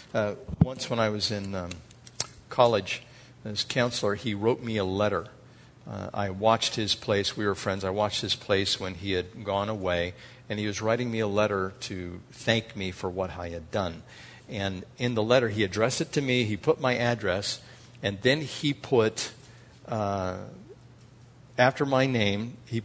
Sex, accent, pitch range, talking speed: male, American, 105-130 Hz, 180 wpm